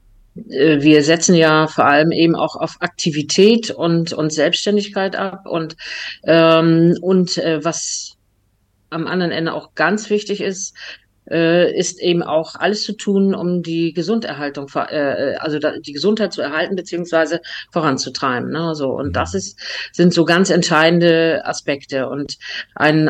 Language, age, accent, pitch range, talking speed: German, 50-69, German, 150-175 Hz, 140 wpm